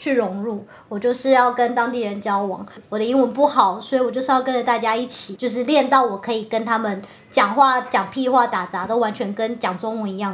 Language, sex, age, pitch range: Chinese, male, 30-49, 220-275 Hz